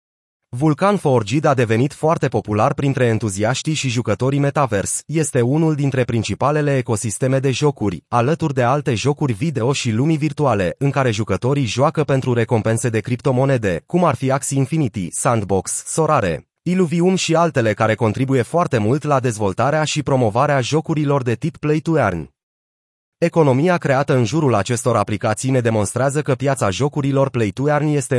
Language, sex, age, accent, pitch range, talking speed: Romanian, male, 30-49, native, 115-150 Hz, 155 wpm